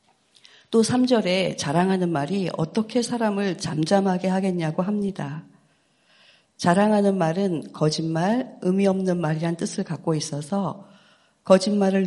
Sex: female